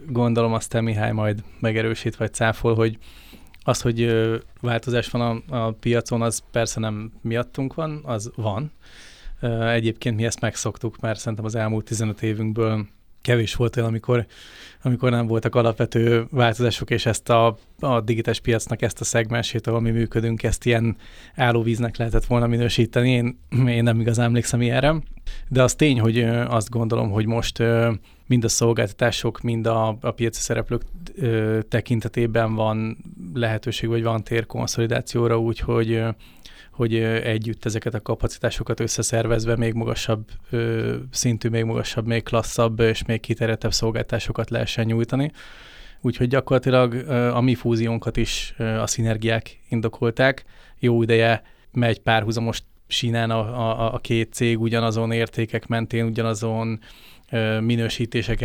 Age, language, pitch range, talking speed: 20-39, Hungarian, 115-120 Hz, 135 wpm